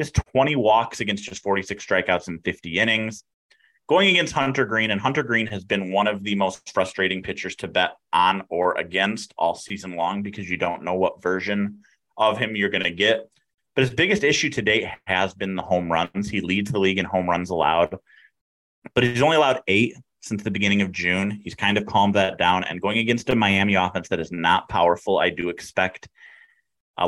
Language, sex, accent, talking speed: English, male, American, 210 wpm